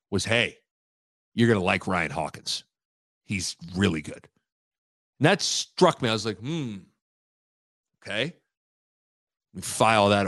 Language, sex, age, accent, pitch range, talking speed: English, male, 40-59, American, 105-150 Hz, 130 wpm